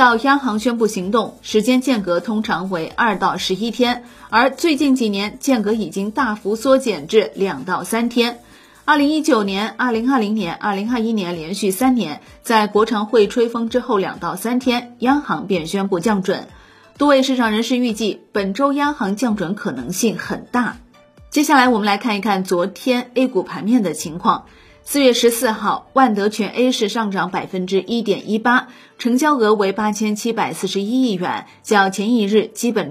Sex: female